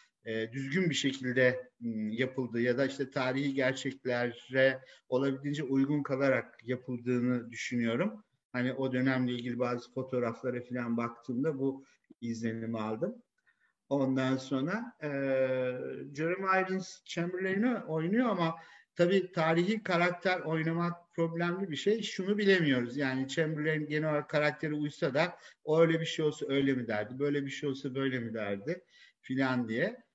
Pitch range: 125-160 Hz